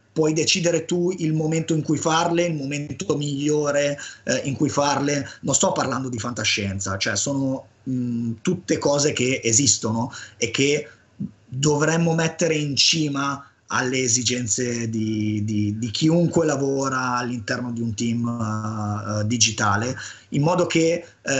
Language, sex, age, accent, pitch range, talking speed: Italian, male, 30-49, native, 120-150 Hz, 130 wpm